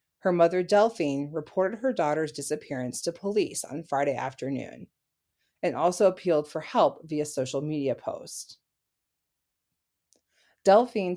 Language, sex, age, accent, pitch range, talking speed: English, female, 30-49, American, 145-180 Hz, 120 wpm